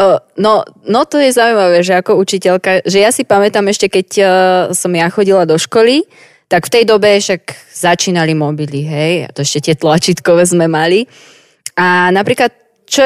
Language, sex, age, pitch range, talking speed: Slovak, female, 20-39, 165-205 Hz, 170 wpm